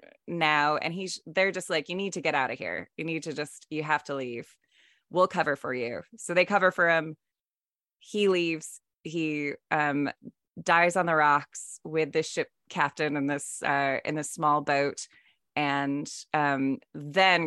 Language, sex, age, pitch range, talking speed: English, female, 20-39, 145-175 Hz, 180 wpm